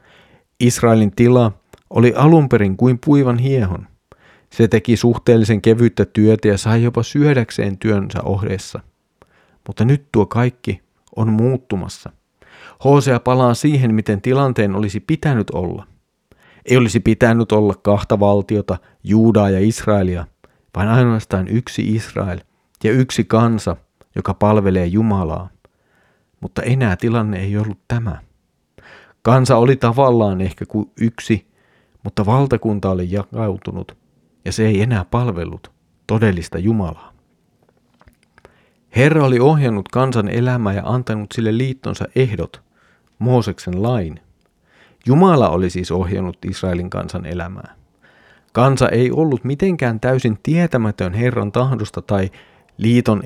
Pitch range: 100-125 Hz